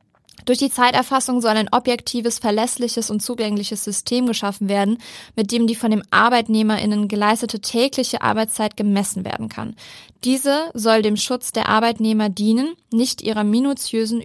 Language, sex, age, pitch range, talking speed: German, female, 20-39, 205-235 Hz, 145 wpm